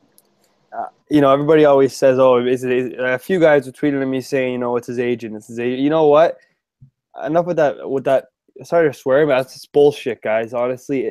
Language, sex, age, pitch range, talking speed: English, male, 20-39, 120-145 Hz, 225 wpm